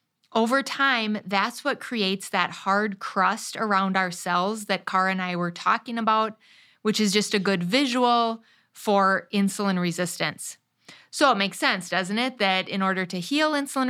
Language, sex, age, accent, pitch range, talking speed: English, female, 30-49, American, 185-220 Hz, 170 wpm